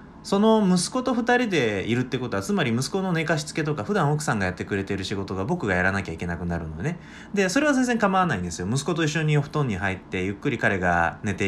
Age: 20-39